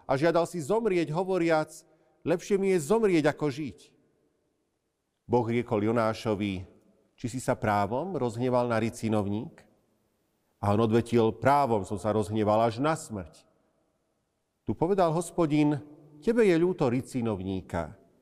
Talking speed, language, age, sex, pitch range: 125 wpm, Slovak, 40-59, male, 115-155 Hz